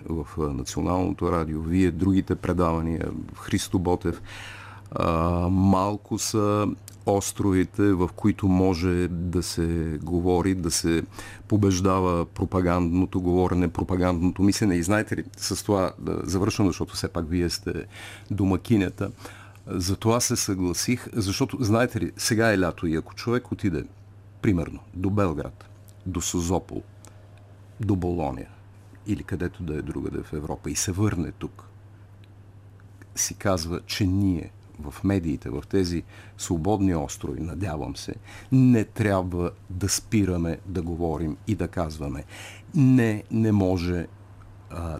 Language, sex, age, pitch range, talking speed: Bulgarian, male, 50-69, 85-100 Hz, 130 wpm